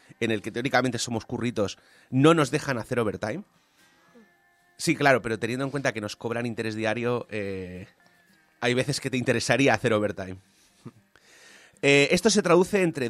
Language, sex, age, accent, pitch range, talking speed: Spanish, male, 30-49, Spanish, 105-140 Hz, 160 wpm